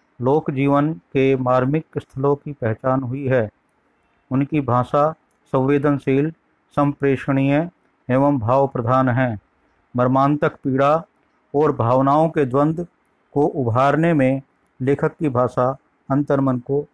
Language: Hindi